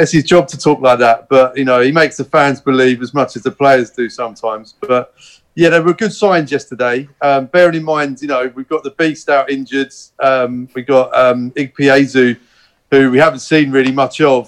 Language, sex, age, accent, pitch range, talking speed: English, male, 30-49, British, 125-145 Hz, 225 wpm